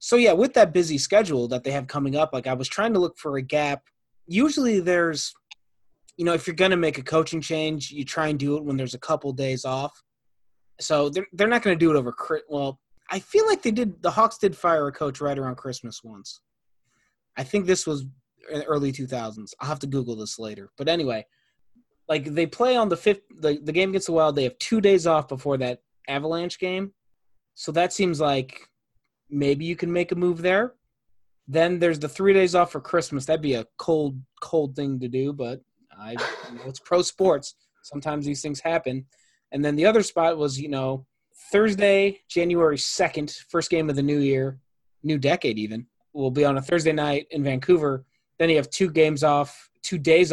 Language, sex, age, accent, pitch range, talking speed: English, male, 20-39, American, 135-180 Hz, 215 wpm